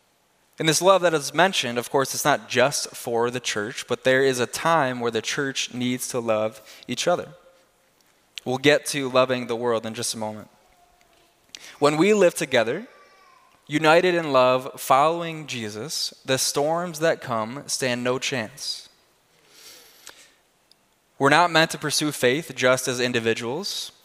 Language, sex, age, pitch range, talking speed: English, male, 20-39, 125-155 Hz, 155 wpm